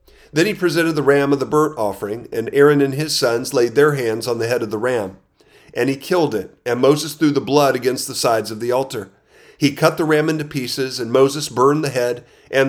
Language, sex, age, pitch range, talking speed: English, male, 40-59, 120-145 Hz, 235 wpm